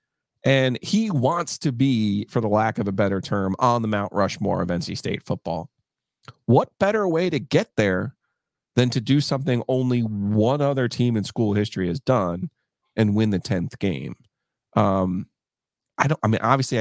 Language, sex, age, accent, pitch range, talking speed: English, male, 30-49, American, 110-150 Hz, 175 wpm